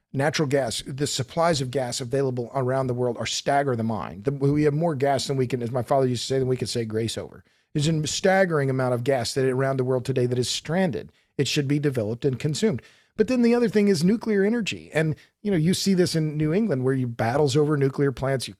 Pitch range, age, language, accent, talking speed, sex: 135-180 Hz, 40-59, English, American, 250 wpm, male